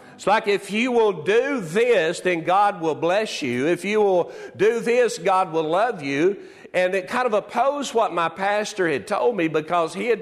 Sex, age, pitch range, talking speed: male, 50-69, 170-210 Hz, 205 wpm